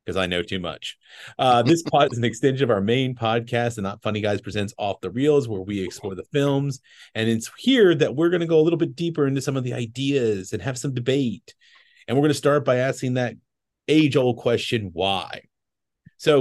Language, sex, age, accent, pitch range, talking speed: English, male, 40-59, American, 110-145 Hz, 225 wpm